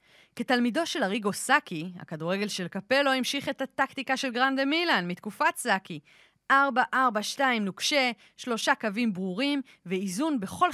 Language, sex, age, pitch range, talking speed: Hebrew, female, 20-39, 185-260 Hz, 125 wpm